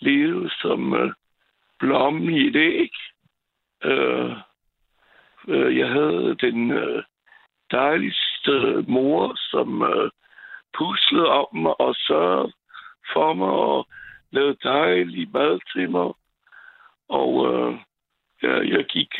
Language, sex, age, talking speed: Danish, male, 60-79, 100 wpm